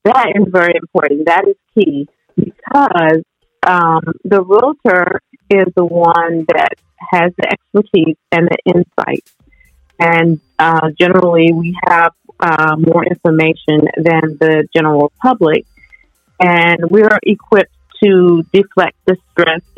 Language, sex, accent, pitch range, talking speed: English, female, American, 155-180 Hz, 125 wpm